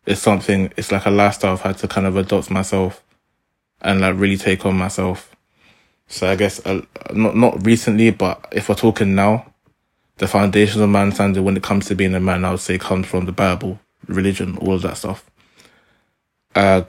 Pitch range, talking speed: 95-105 Hz, 200 wpm